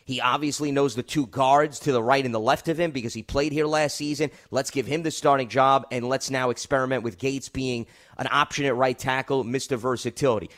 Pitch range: 125-165 Hz